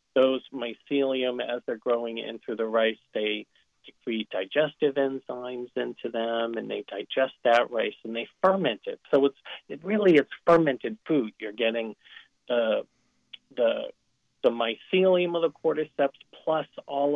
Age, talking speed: 40-59, 145 wpm